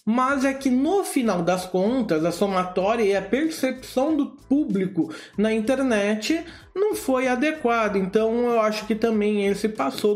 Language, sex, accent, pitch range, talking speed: Portuguese, male, Brazilian, 190-255 Hz, 155 wpm